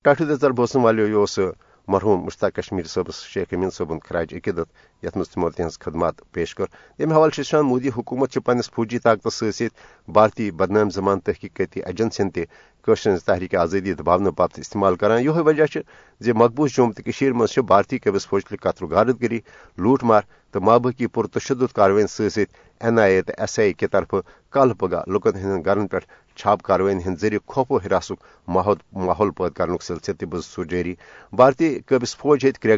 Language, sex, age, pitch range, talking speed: Urdu, male, 60-79, 100-130 Hz, 160 wpm